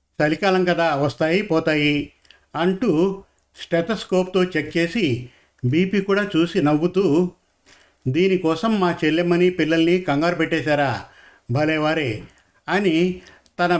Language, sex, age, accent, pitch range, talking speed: Telugu, male, 50-69, native, 155-180 Hz, 90 wpm